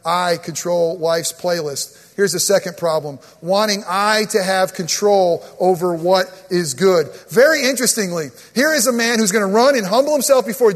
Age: 40-59